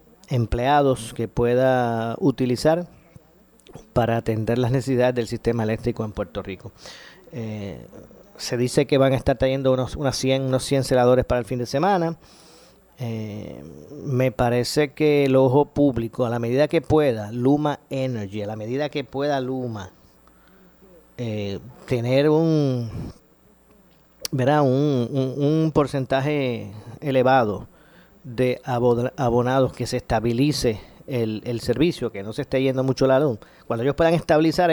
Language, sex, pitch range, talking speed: Spanish, male, 120-140 Hz, 140 wpm